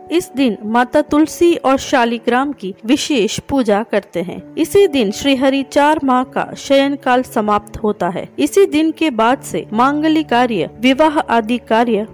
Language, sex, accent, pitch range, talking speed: Hindi, female, native, 220-300 Hz, 160 wpm